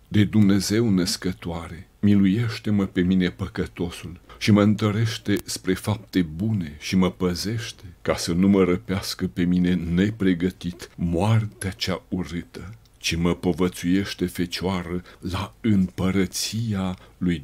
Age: 60-79